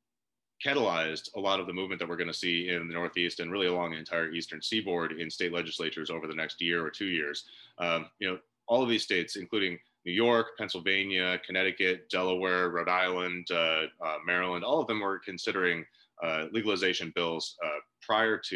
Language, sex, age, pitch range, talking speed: English, male, 30-49, 85-95 Hz, 195 wpm